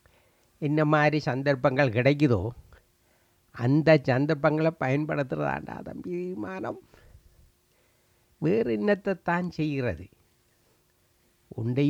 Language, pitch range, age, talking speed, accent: English, 115-165 Hz, 60-79, 90 wpm, Indian